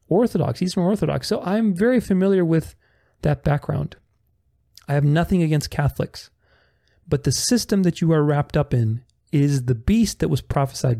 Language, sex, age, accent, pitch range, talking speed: English, male, 40-59, American, 130-180 Hz, 170 wpm